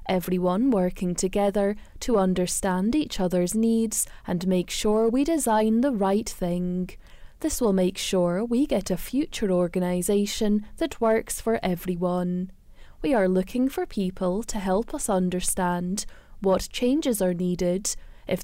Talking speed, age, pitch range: 140 wpm, 10-29, 180-230 Hz